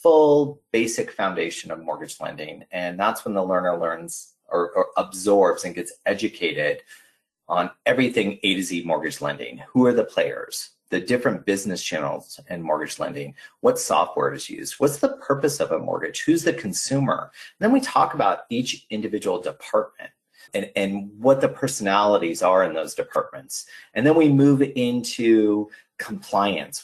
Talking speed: 155 wpm